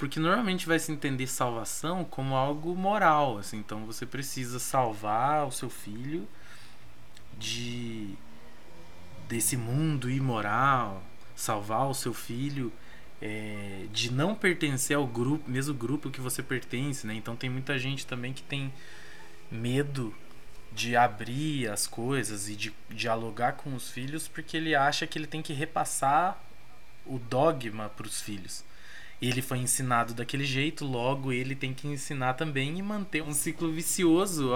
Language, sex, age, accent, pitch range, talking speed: Portuguese, male, 20-39, Brazilian, 120-160 Hz, 140 wpm